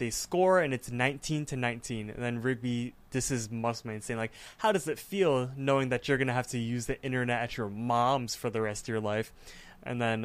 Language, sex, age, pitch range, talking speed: English, male, 20-39, 115-135 Hz, 235 wpm